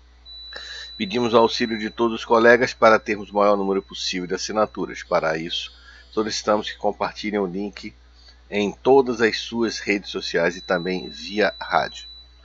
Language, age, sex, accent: Portuguese, 50-69, male, Brazilian